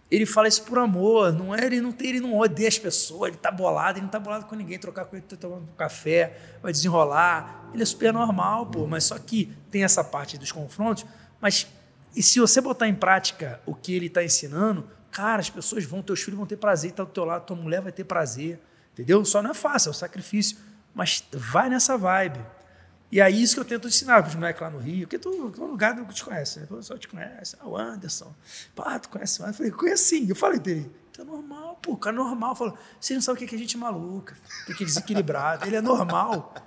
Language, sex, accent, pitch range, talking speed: Portuguese, male, Brazilian, 170-225 Hz, 255 wpm